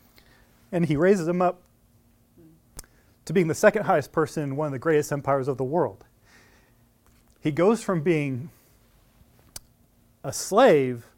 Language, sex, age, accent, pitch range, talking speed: English, male, 30-49, American, 130-190 Hz, 140 wpm